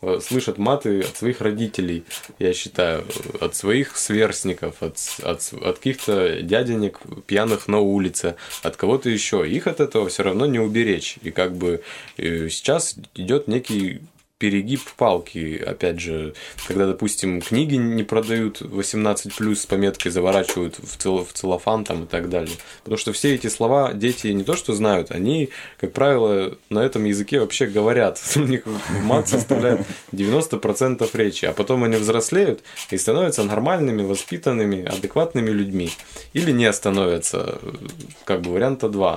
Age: 20-39